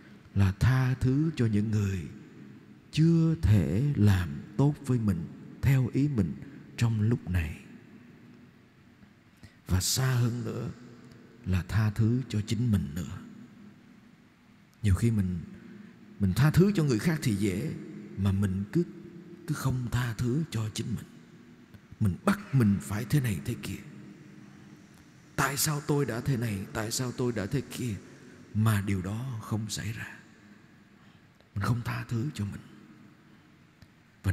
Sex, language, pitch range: male, Vietnamese, 105-155 Hz